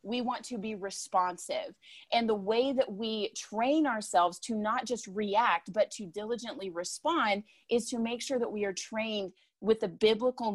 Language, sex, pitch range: English, female, 205-250 Hz